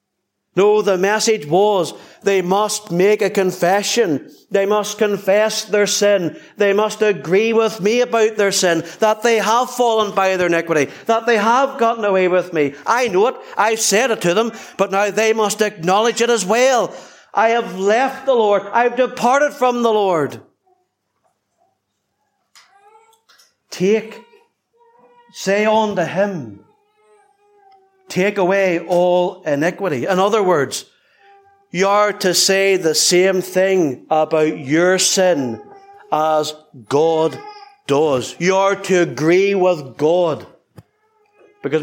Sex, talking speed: male, 135 wpm